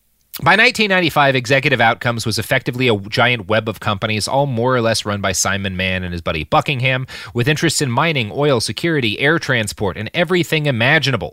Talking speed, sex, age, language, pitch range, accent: 180 wpm, male, 30-49, English, 105-145 Hz, American